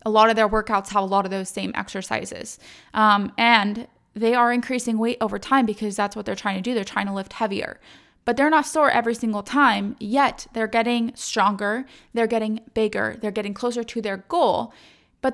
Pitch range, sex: 210-250 Hz, female